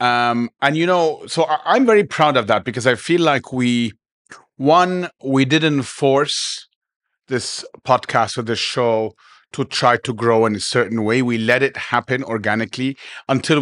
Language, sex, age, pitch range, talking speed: English, male, 40-59, 115-140 Hz, 165 wpm